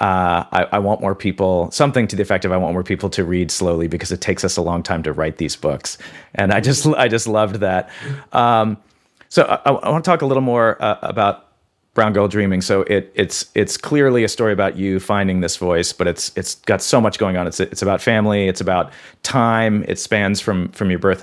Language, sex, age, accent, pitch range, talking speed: English, male, 40-59, American, 90-110 Hz, 235 wpm